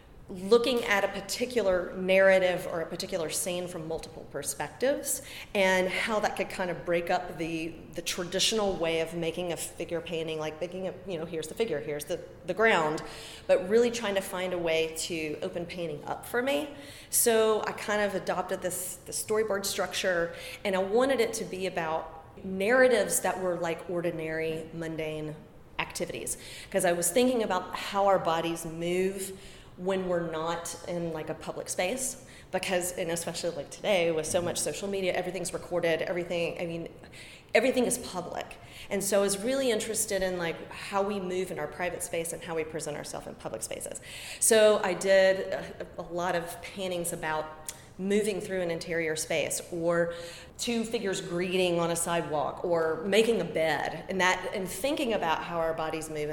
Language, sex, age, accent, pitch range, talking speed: English, female, 30-49, American, 165-195 Hz, 180 wpm